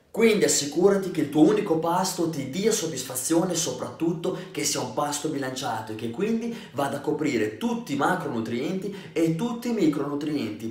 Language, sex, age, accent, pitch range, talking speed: Italian, male, 30-49, native, 140-185 Hz, 165 wpm